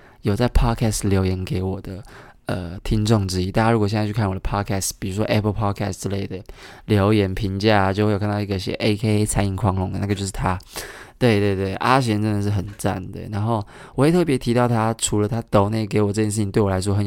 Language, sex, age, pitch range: Chinese, male, 20-39, 100-120 Hz